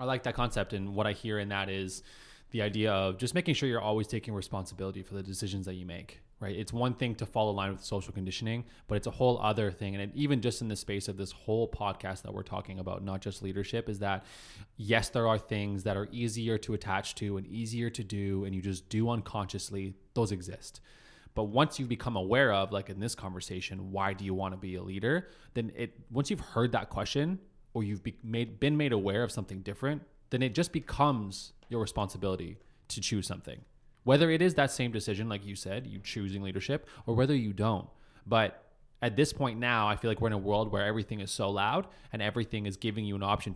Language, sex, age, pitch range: English, male, 20-39, 100-120 Hz